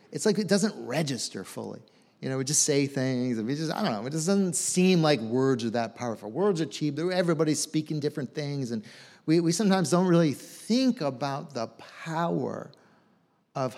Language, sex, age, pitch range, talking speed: English, male, 40-59, 125-185 Hz, 195 wpm